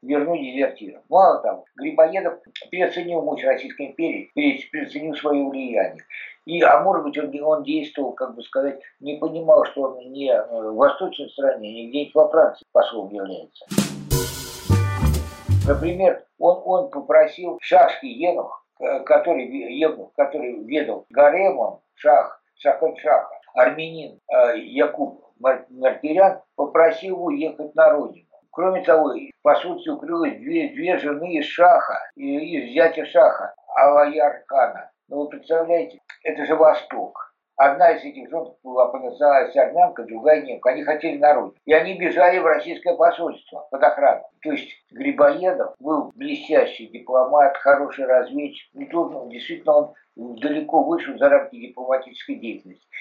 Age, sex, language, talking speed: 60-79, male, Russian, 130 wpm